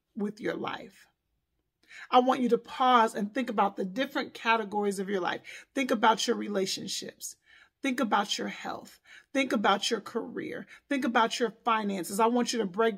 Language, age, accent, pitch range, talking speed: English, 40-59, American, 220-265 Hz, 175 wpm